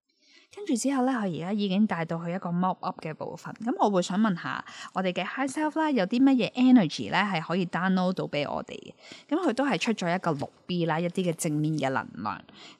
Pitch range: 165-230 Hz